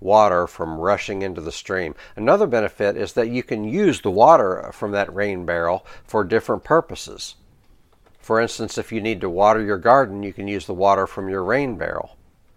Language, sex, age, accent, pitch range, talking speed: English, male, 60-79, American, 95-120 Hz, 190 wpm